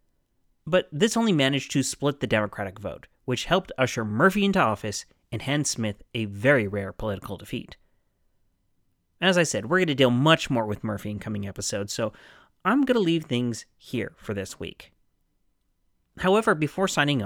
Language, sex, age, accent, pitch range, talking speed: English, male, 30-49, American, 110-170 Hz, 175 wpm